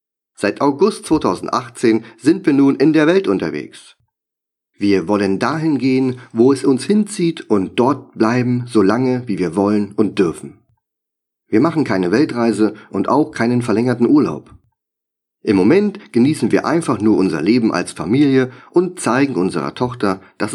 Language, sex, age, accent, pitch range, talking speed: German, male, 40-59, German, 105-145 Hz, 150 wpm